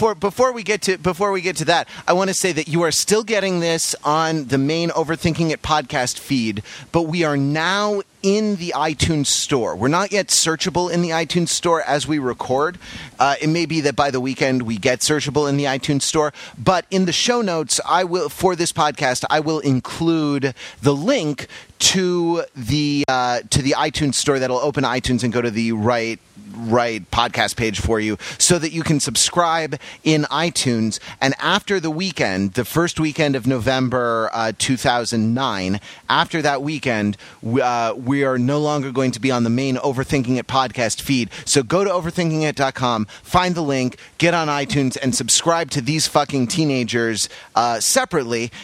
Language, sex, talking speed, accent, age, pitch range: English, male, 185 wpm, American, 30-49, 125-170 Hz